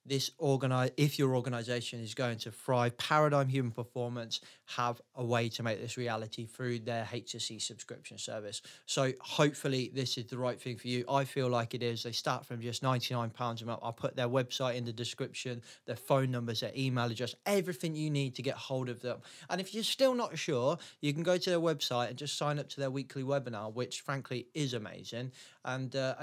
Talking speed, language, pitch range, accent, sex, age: 210 wpm, English, 120-145 Hz, British, male, 20-39